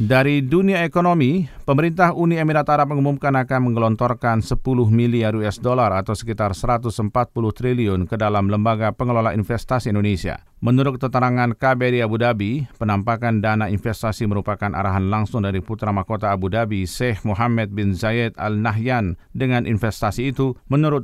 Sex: male